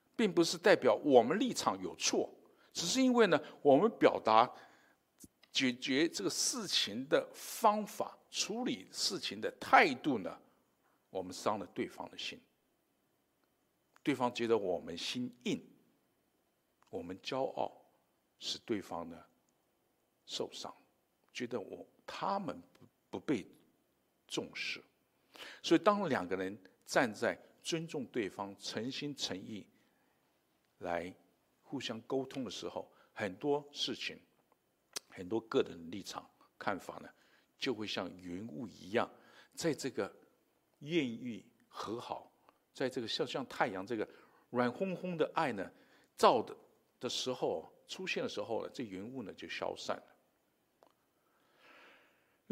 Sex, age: male, 50-69